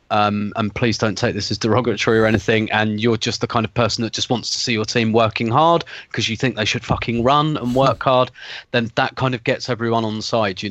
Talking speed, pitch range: 260 wpm, 105-120 Hz